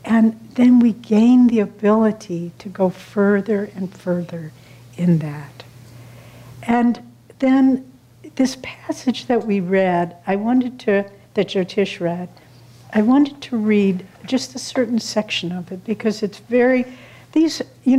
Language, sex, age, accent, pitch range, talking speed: English, female, 60-79, American, 170-220 Hz, 135 wpm